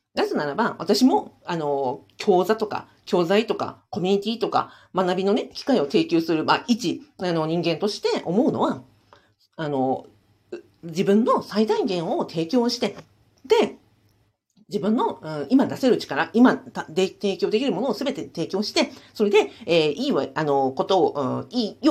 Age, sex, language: 40-59, female, Japanese